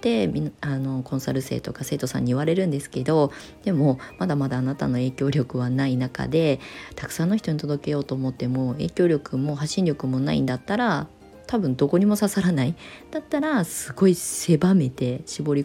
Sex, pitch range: female, 135-180 Hz